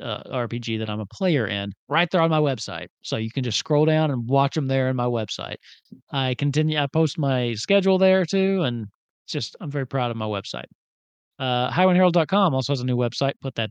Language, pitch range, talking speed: English, 115-160 Hz, 220 wpm